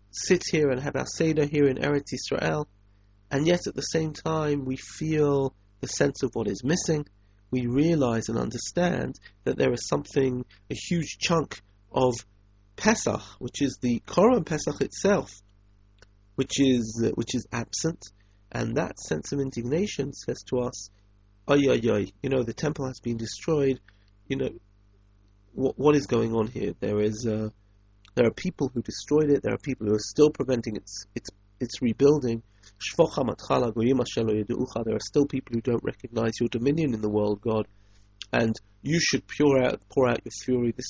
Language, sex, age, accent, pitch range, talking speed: English, male, 30-49, British, 100-140 Hz, 175 wpm